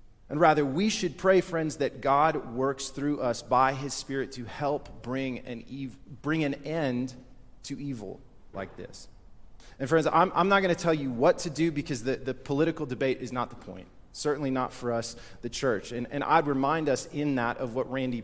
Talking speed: 205 wpm